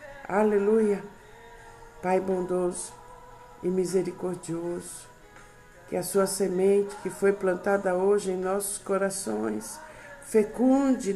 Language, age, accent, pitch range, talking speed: Portuguese, 60-79, Brazilian, 180-205 Hz, 90 wpm